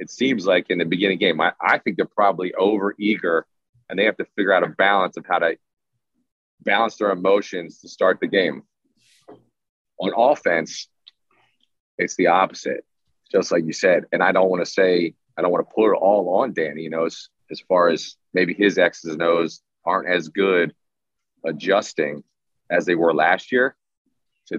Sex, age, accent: male, 30-49, American